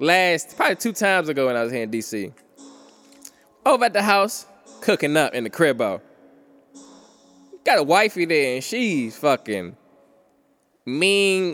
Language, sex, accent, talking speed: English, male, American, 150 wpm